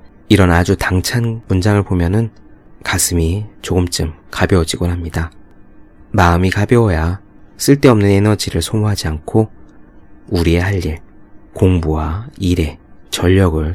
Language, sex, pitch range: Korean, male, 90-110 Hz